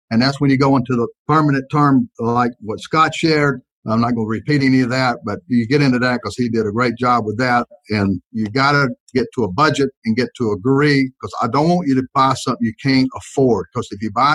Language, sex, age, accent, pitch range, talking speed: English, male, 50-69, American, 115-140 Hz, 255 wpm